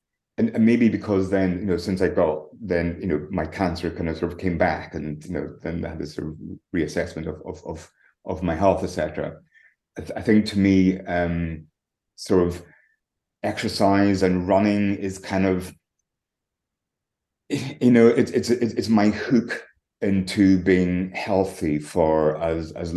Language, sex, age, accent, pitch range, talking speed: English, male, 30-49, British, 85-95 Hz, 165 wpm